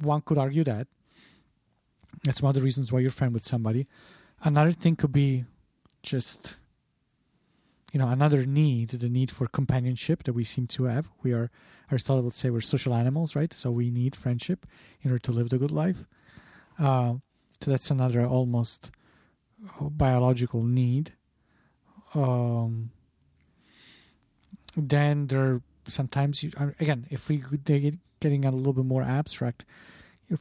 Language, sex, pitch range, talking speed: English, male, 125-145 Hz, 155 wpm